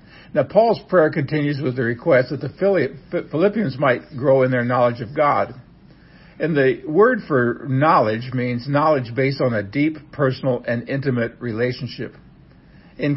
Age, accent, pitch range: 60-79, American, 120-145 Hz